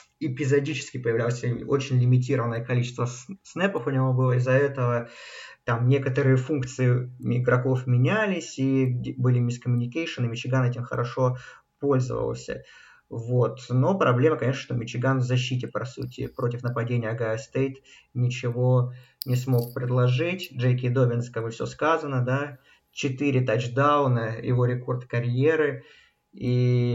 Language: Russian